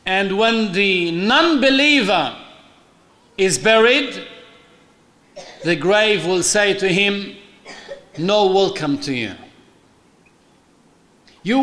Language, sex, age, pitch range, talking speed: Arabic, male, 50-69, 175-230 Hz, 90 wpm